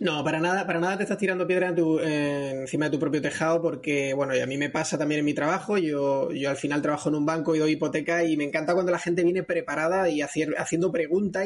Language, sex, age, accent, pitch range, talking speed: Spanish, male, 20-39, Spanish, 160-195 Hz, 265 wpm